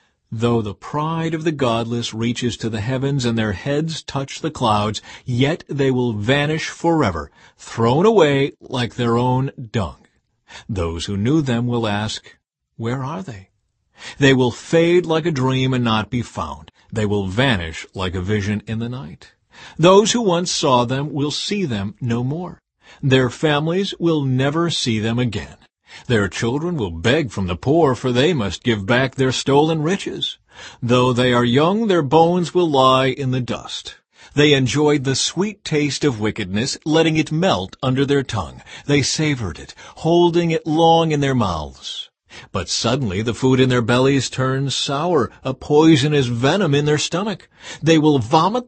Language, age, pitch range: English, 50-69, 115-155 Hz